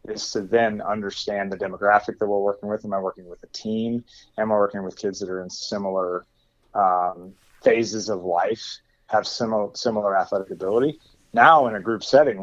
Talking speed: 190 wpm